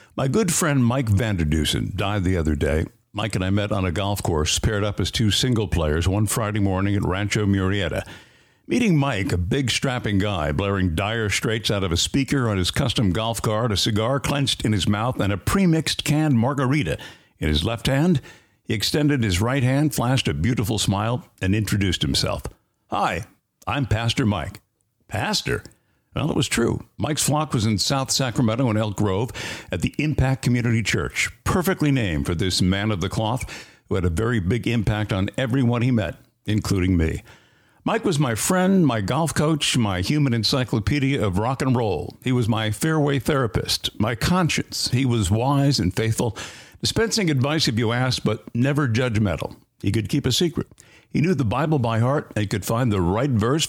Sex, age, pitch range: male, 60-79, 100-135 Hz